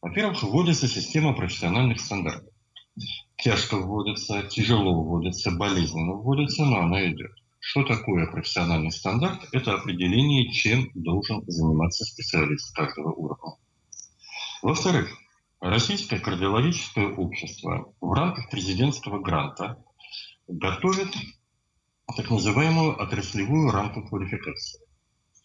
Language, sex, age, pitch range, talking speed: Russian, male, 40-59, 95-140 Hz, 95 wpm